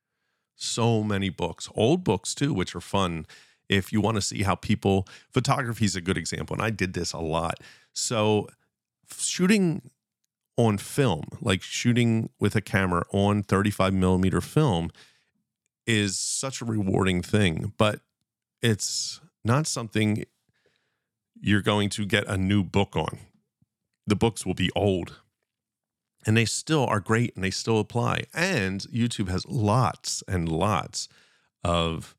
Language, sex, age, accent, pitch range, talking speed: English, male, 40-59, American, 90-115 Hz, 145 wpm